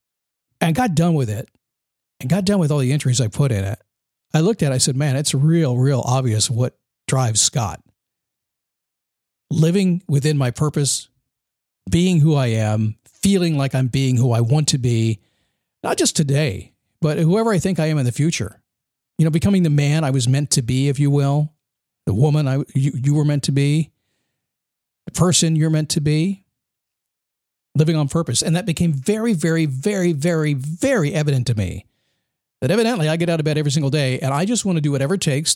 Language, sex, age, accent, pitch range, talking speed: English, male, 50-69, American, 130-160 Hz, 205 wpm